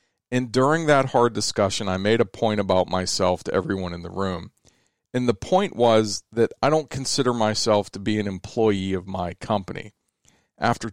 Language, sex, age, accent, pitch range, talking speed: English, male, 40-59, American, 95-125 Hz, 180 wpm